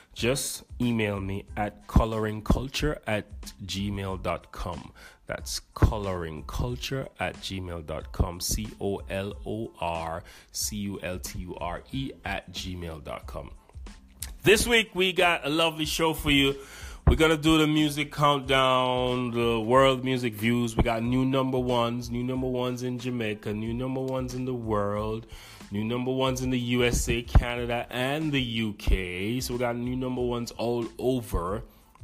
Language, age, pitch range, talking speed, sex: English, 30-49, 100-130 Hz, 125 wpm, male